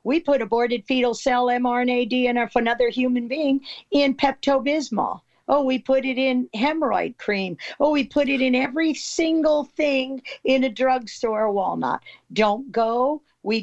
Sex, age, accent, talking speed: female, 50-69, American, 155 wpm